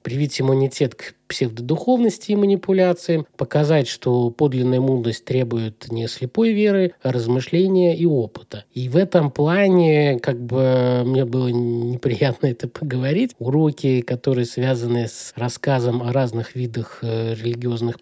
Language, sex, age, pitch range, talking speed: Russian, male, 20-39, 120-155 Hz, 125 wpm